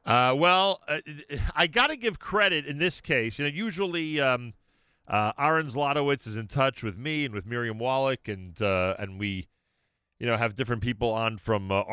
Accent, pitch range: American, 100-150 Hz